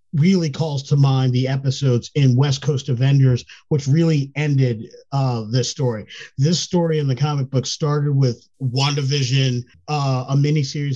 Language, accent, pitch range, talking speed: English, American, 125-145 Hz, 155 wpm